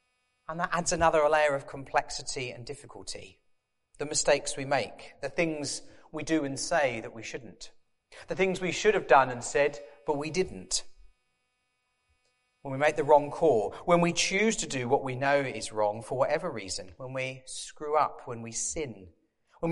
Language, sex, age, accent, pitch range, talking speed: English, male, 40-59, British, 130-185 Hz, 185 wpm